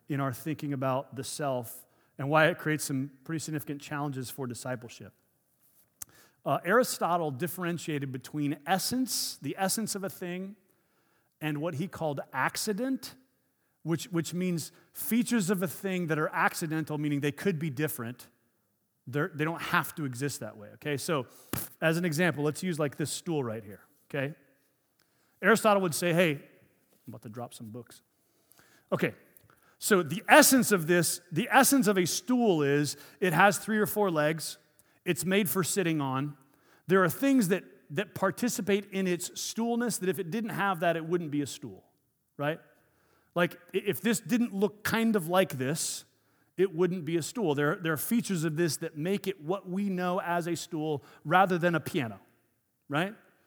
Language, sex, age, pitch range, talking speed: English, male, 30-49, 145-190 Hz, 175 wpm